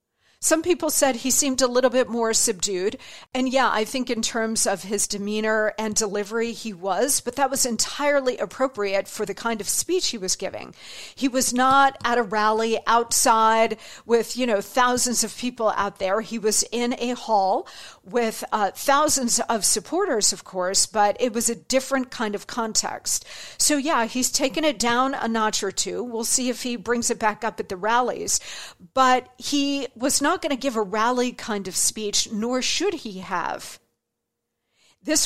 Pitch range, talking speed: 215-265 Hz, 185 wpm